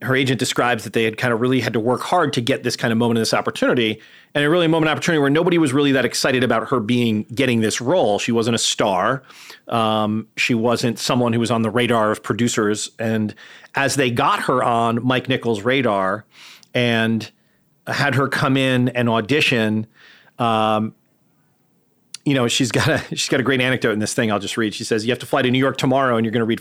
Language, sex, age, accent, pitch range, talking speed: English, male, 40-59, American, 115-145 Hz, 230 wpm